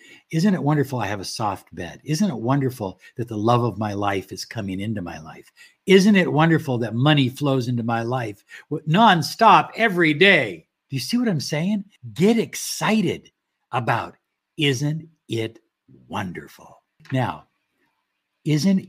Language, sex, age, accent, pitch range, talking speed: English, male, 60-79, American, 110-150 Hz, 155 wpm